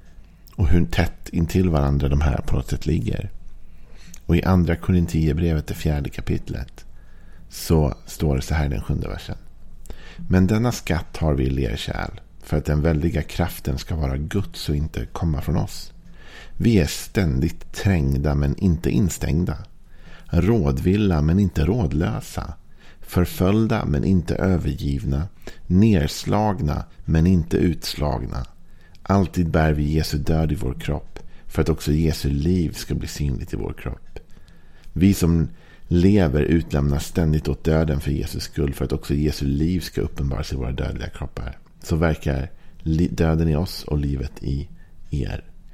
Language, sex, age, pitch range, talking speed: Swedish, male, 50-69, 75-90 Hz, 150 wpm